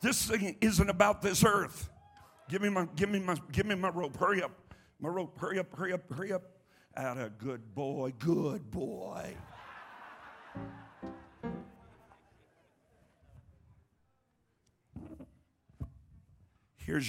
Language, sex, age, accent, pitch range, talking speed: English, male, 50-69, American, 115-180 Hz, 110 wpm